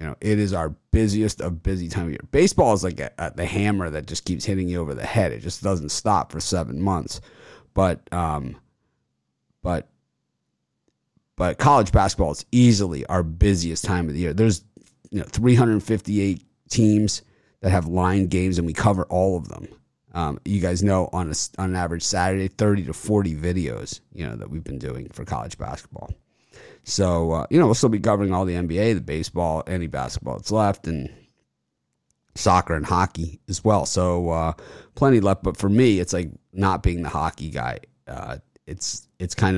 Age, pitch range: 30-49, 80-100 Hz